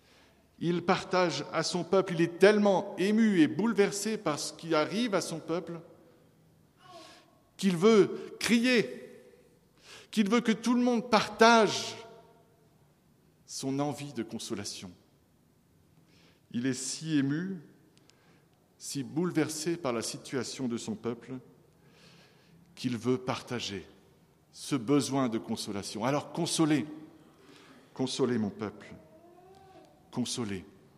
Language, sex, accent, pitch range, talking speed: French, male, French, 120-175 Hz, 110 wpm